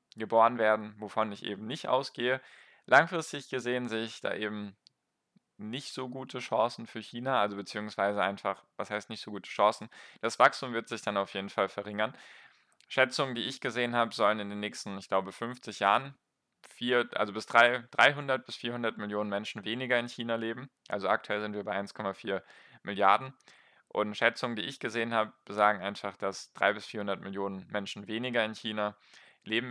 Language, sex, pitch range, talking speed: German, male, 100-115 Hz, 180 wpm